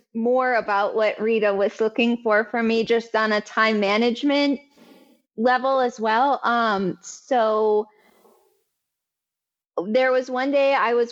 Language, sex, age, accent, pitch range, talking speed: English, female, 20-39, American, 215-270 Hz, 135 wpm